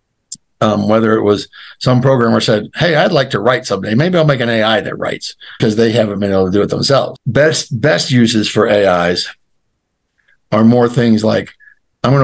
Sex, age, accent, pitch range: male, 60-79, American, 105-125 Hz